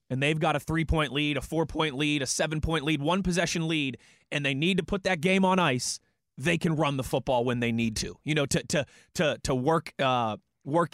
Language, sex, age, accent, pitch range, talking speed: English, male, 20-39, American, 140-165 Hz, 230 wpm